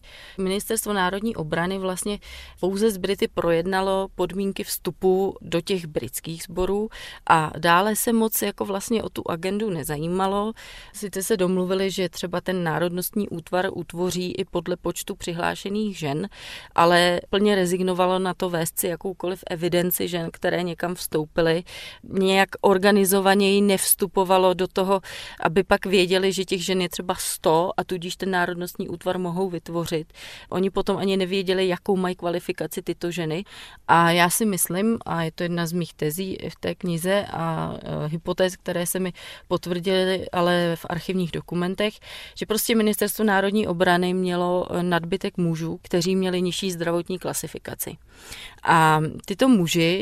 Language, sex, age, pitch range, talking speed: Czech, female, 30-49, 175-195 Hz, 145 wpm